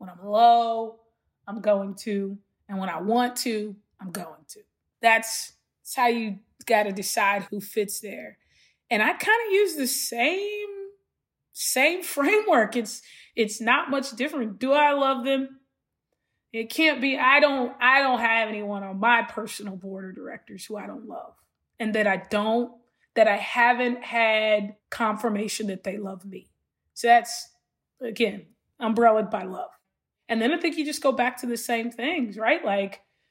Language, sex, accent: English, female, American